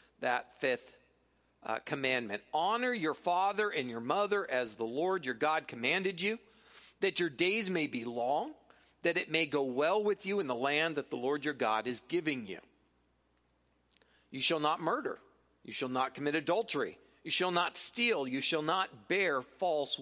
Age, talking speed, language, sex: 40-59, 175 wpm, English, male